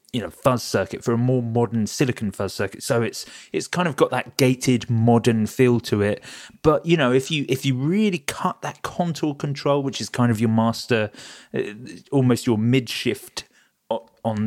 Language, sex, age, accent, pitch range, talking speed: English, male, 30-49, British, 115-150 Hz, 190 wpm